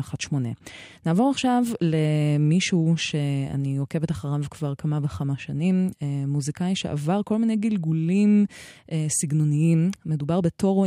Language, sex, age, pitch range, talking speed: Hebrew, female, 20-39, 145-175 Hz, 105 wpm